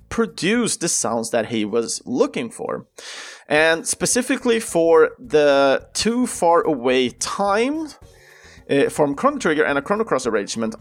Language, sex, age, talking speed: Swedish, male, 30-49, 140 wpm